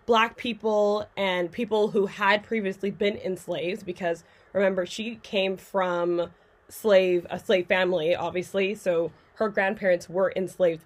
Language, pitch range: English, 180-220 Hz